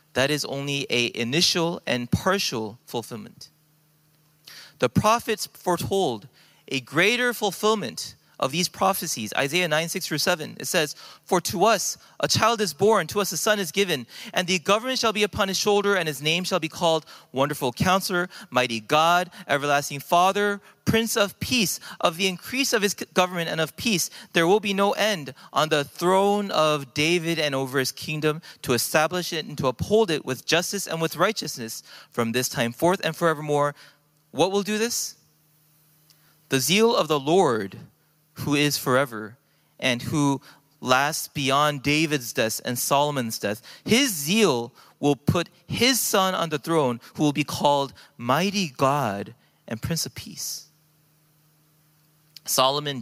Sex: male